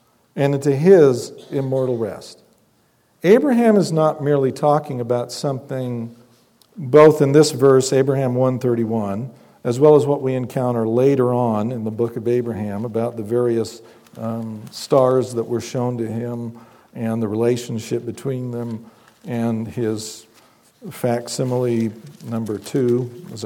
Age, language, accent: 50-69, English, American